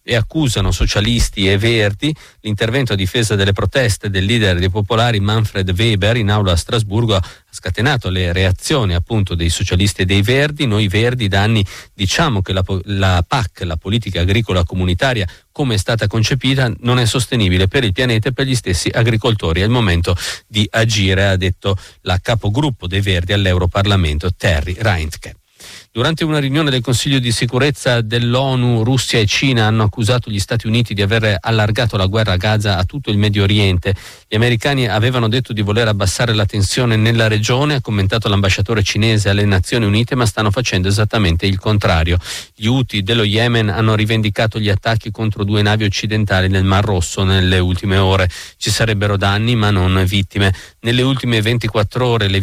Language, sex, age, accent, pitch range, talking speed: Italian, male, 50-69, native, 95-115 Hz, 175 wpm